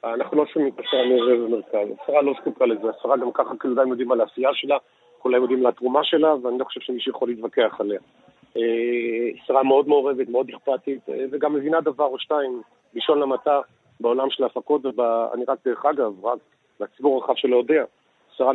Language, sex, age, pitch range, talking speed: Hebrew, male, 40-59, 120-150 Hz, 180 wpm